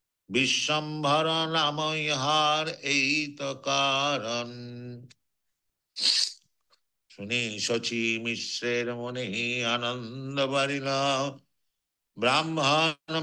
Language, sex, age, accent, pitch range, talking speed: English, male, 60-79, Indian, 120-150 Hz, 45 wpm